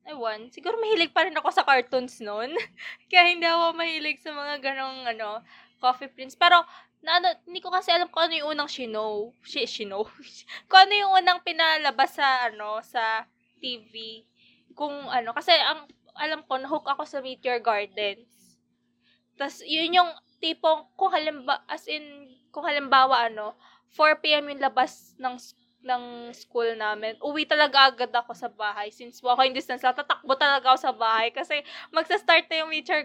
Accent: native